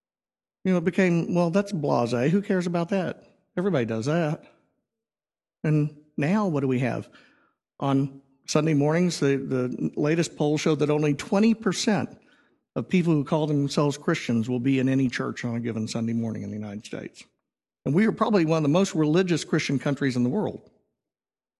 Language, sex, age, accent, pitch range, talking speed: English, male, 50-69, American, 135-195 Hz, 180 wpm